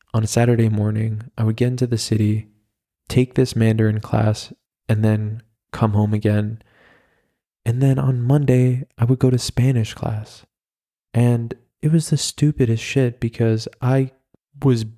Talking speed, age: 150 wpm, 20-39